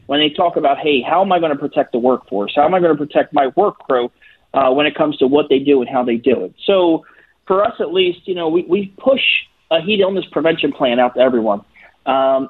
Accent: American